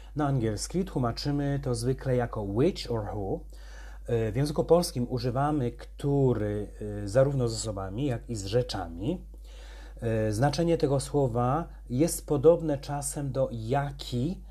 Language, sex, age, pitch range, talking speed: Polish, male, 30-49, 100-140 Hz, 120 wpm